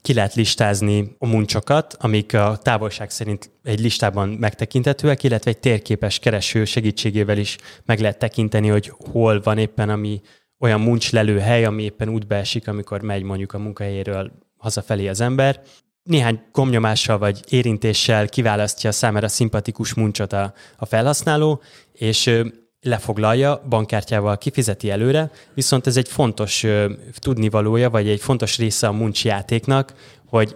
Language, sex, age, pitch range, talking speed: Hungarian, male, 20-39, 105-125 Hz, 135 wpm